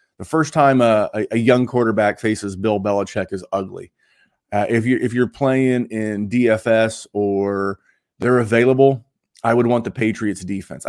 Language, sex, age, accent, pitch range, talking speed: English, male, 30-49, American, 105-130 Hz, 155 wpm